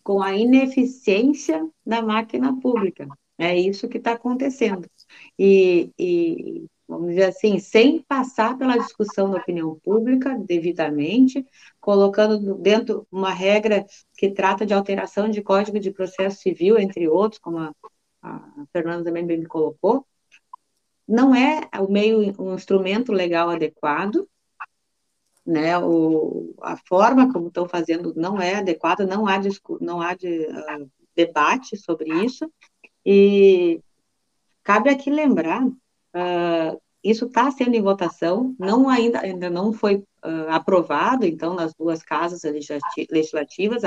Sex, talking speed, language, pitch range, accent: female, 120 wpm, Portuguese, 175-230 Hz, Brazilian